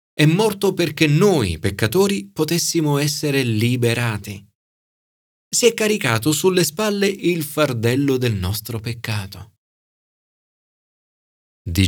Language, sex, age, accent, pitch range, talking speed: Italian, male, 40-59, native, 100-160 Hz, 95 wpm